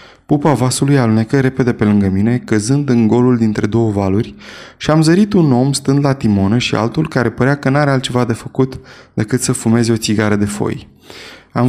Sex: male